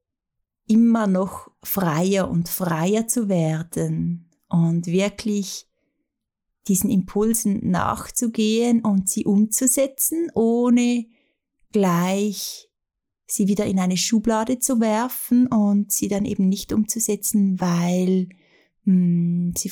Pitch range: 185-220 Hz